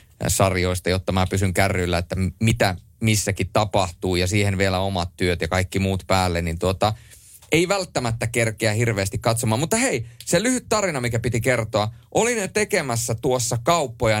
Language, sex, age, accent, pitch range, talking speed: Finnish, male, 30-49, native, 95-130 Hz, 155 wpm